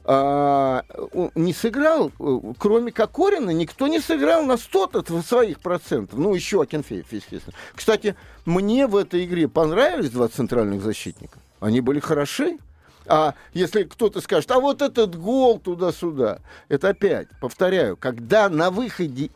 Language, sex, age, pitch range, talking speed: Russian, male, 50-69, 170-245 Hz, 130 wpm